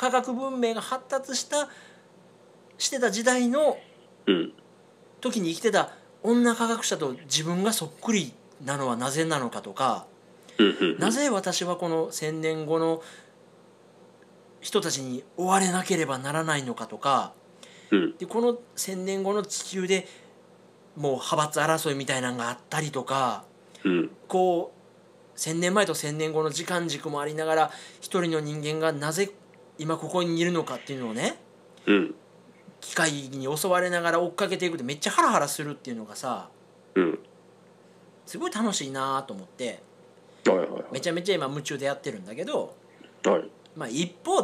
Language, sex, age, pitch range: Japanese, male, 40-59, 150-200 Hz